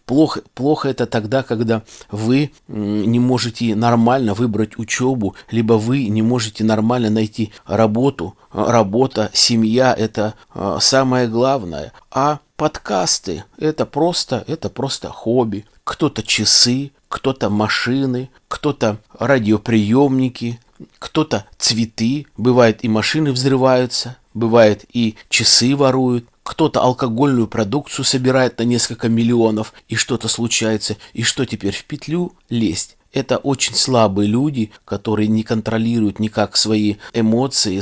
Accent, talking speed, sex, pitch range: native, 110 wpm, male, 110-130 Hz